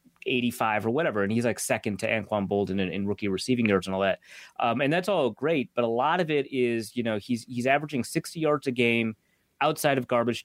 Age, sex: 30-49, male